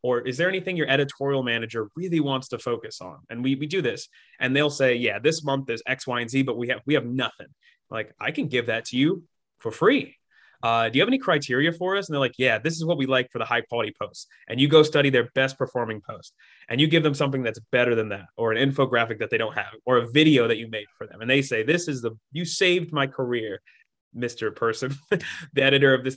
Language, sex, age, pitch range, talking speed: English, male, 20-39, 120-155 Hz, 260 wpm